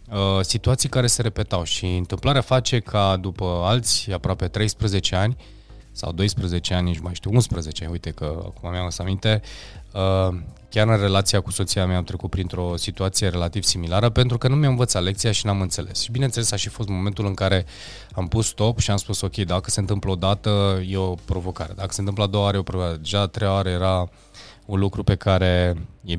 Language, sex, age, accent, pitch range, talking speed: Romanian, male, 20-39, native, 90-105 Hz, 205 wpm